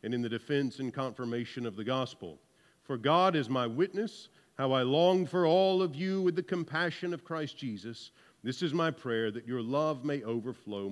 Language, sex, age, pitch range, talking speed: English, male, 50-69, 115-165 Hz, 200 wpm